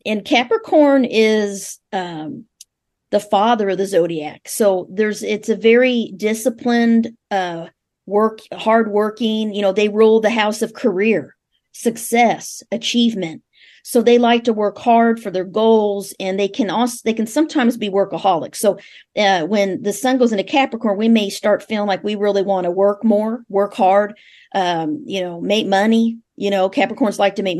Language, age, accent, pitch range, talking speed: English, 40-59, American, 195-230 Hz, 170 wpm